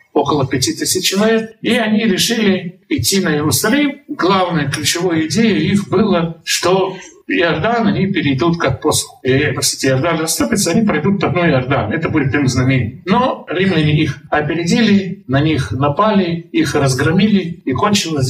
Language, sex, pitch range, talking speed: Russian, male, 150-205 Hz, 140 wpm